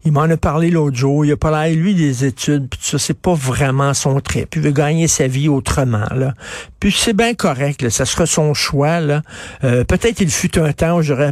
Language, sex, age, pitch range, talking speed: French, male, 60-79, 125-160 Hz, 235 wpm